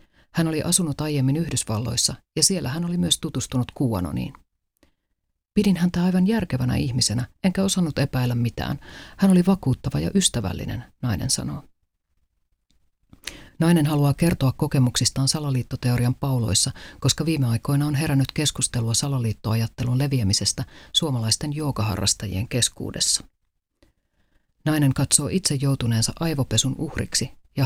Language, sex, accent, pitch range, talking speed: Finnish, female, native, 110-145 Hz, 115 wpm